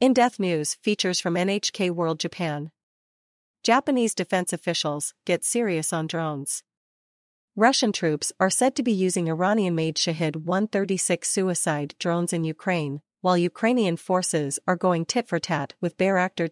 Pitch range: 160-200 Hz